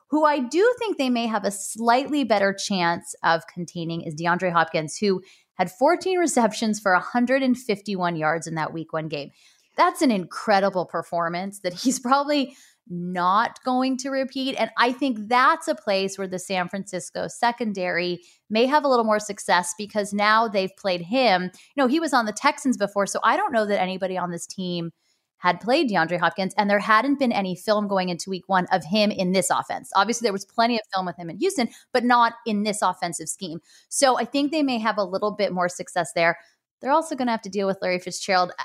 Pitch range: 180-250 Hz